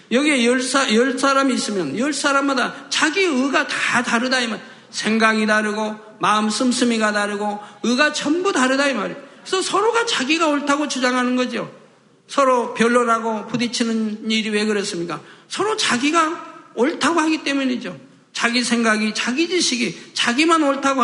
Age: 50-69